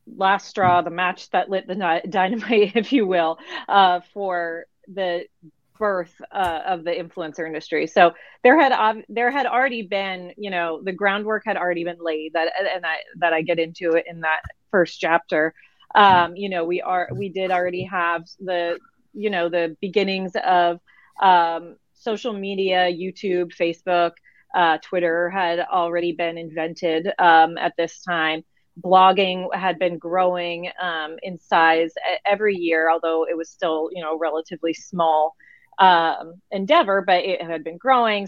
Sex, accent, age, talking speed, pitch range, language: female, American, 30-49, 160 wpm, 170-200 Hz, English